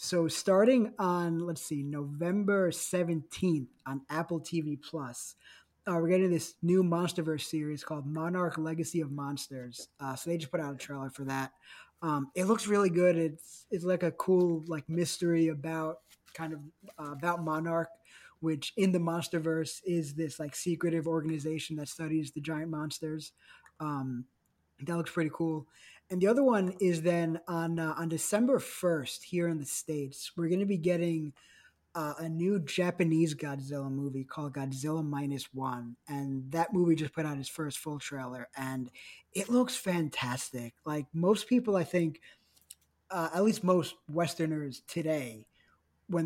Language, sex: English, male